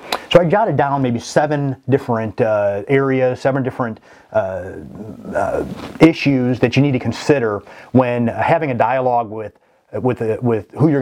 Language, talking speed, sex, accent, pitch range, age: English, 160 wpm, male, American, 115-135 Hz, 30-49